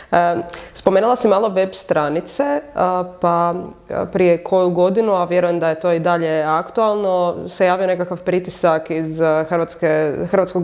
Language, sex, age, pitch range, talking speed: English, female, 20-39, 170-200 Hz, 135 wpm